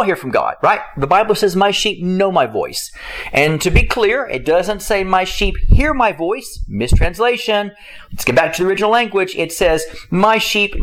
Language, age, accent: English, 40-59, American